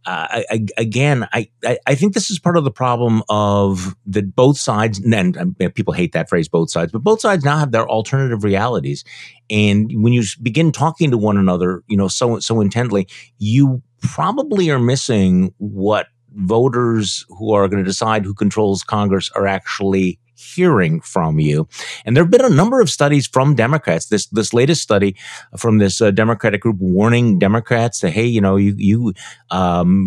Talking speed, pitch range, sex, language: 180 wpm, 100-135 Hz, male, English